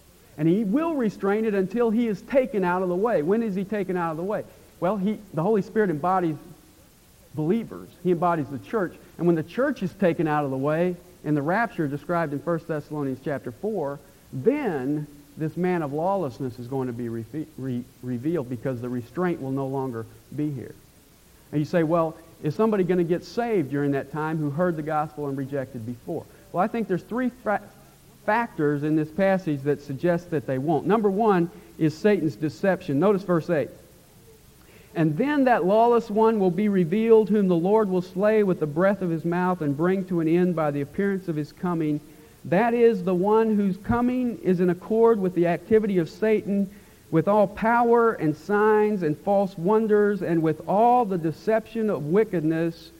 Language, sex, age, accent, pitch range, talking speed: English, male, 50-69, American, 150-205 Hz, 195 wpm